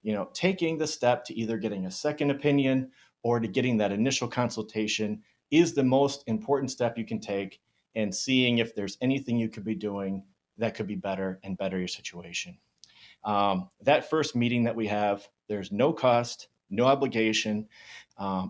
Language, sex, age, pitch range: English, male, 30-49, 110-125 Hz